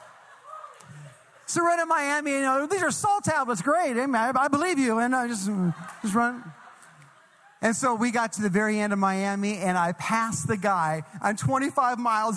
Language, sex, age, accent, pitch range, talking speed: English, male, 40-59, American, 215-270 Hz, 195 wpm